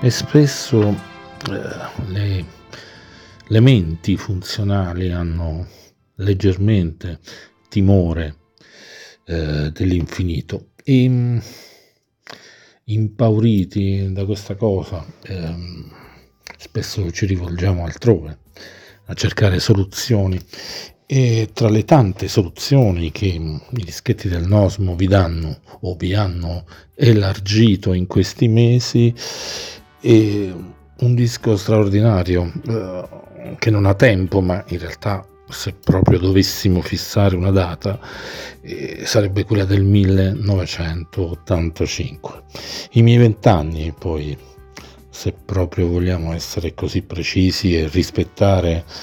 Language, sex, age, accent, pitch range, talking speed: Italian, male, 50-69, native, 85-110 Hz, 95 wpm